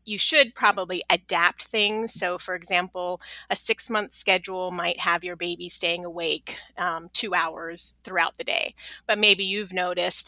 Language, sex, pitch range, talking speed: English, female, 175-205 Hz, 160 wpm